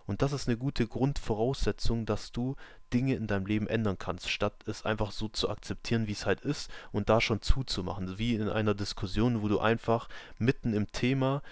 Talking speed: 200 wpm